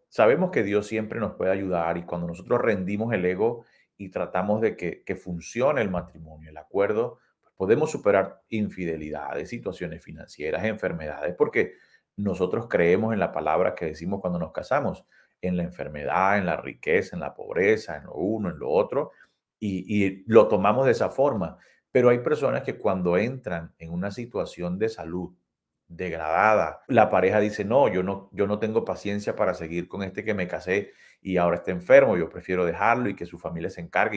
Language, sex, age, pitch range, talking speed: Spanish, male, 40-59, 85-105 Hz, 185 wpm